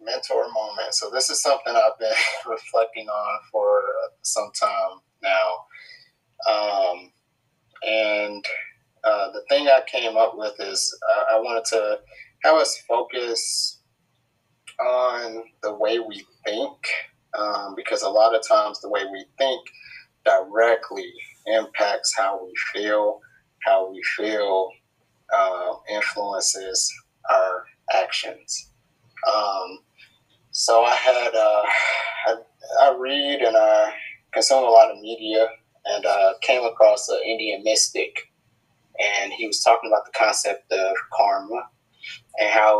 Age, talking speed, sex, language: 30-49, 130 wpm, male, English